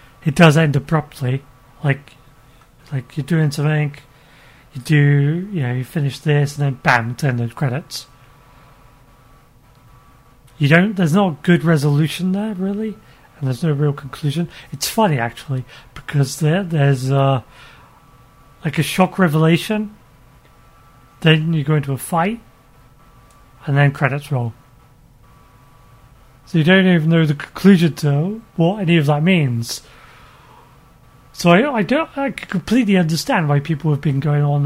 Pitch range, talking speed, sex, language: 130-165 Hz, 140 wpm, male, English